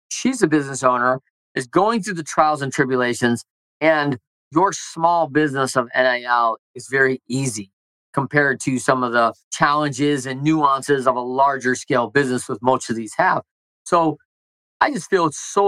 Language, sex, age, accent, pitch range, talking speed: English, male, 40-59, American, 125-165 Hz, 170 wpm